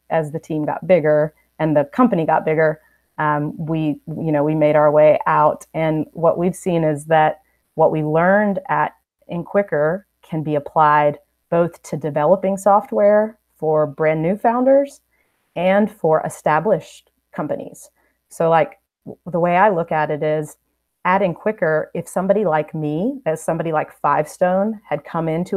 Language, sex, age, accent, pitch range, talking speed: English, female, 30-49, American, 155-190 Hz, 160 wpm